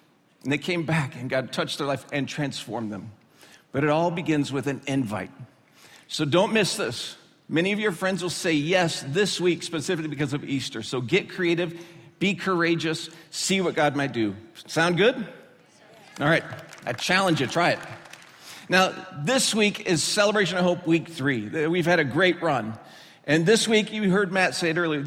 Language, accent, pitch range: English, American, 150-190 Hz